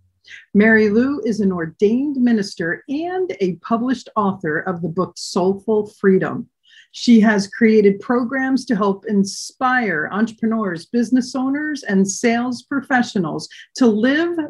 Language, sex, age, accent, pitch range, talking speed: English, female, 50-69, American, 185-245 Hz, 125 wpm